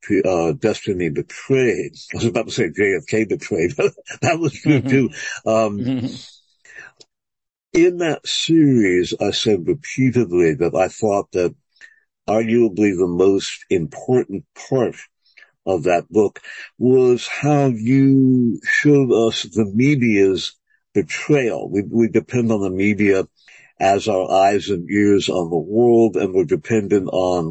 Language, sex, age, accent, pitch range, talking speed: English, male, 60-79, American, 100-130 Hz, 130 wpm